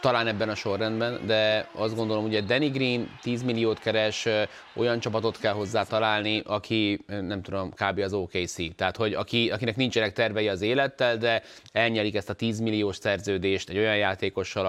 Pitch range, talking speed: 100-125 Hz, 170 wpm